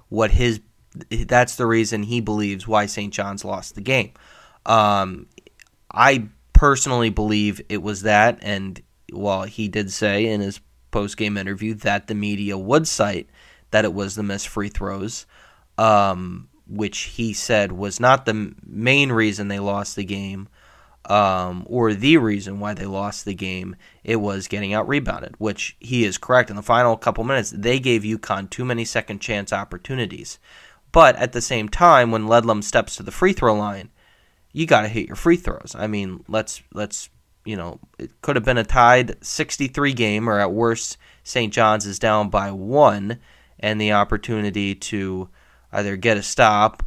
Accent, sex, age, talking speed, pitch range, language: American, male, 20-39, 170 wpm, 100-115 Hz, English